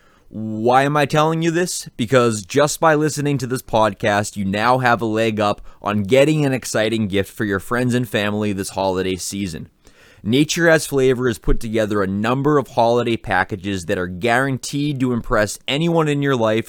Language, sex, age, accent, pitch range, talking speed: English, male, 20-39, American, 100-130 Hz, 185 wpm